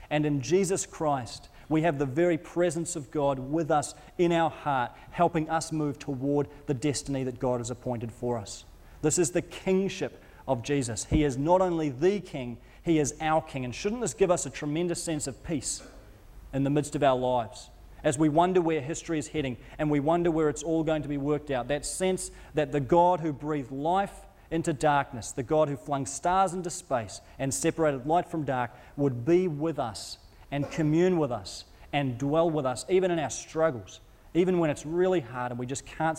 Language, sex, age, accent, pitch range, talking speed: English, male, 30-49, Australian, 130-160 Hz, 205 wpm